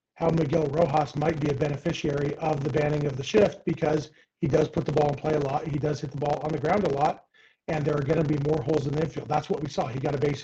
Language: English